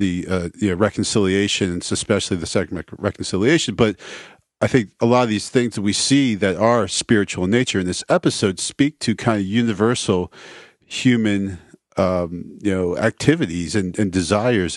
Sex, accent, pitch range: male, American, 90-110 Hz